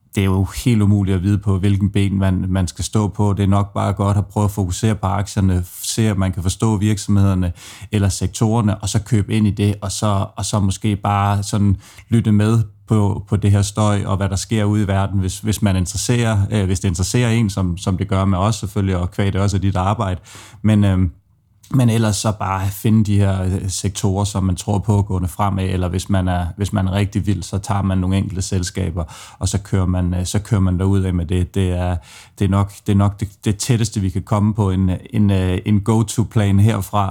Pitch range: 95-110 Hz